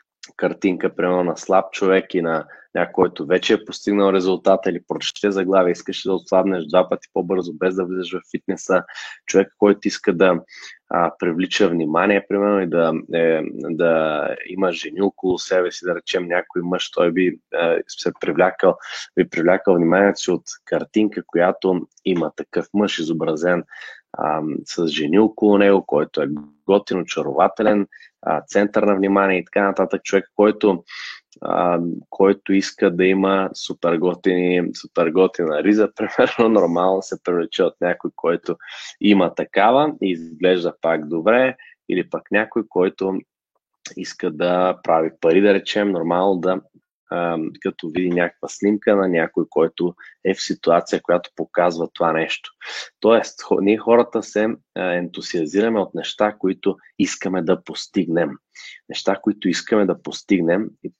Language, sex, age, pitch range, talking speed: Bulgarian, male, 20-39, 90-100 Hz, 140 wpm